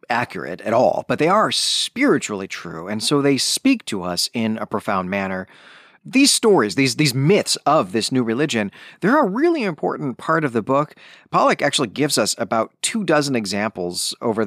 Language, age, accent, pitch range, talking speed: English, 30-49, American, 105-145 Hz, 185 wpm